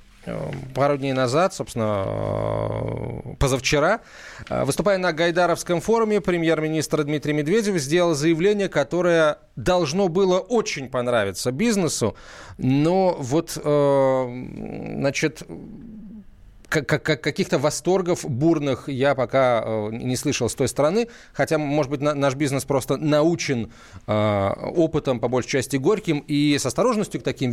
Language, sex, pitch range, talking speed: Russian, male, 125-165 Hz, 110 wpm